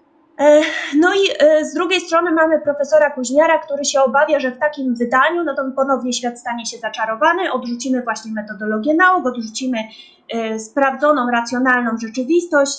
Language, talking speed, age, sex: Polish, 140 wpm, 20-39, female